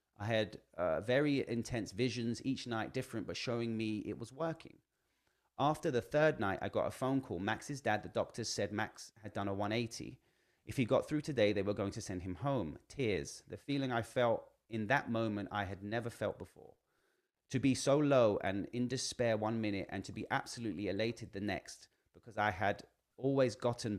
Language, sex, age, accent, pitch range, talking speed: English, male, 30-49, British, 105-125 Hz, 200 wpm